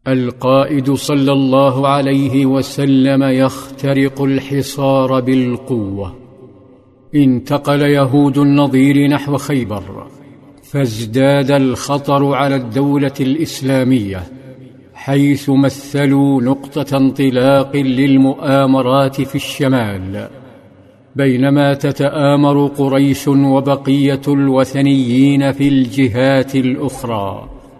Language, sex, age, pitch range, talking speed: Arabic, male, 50-69, 130-140 Hz, 70 wpm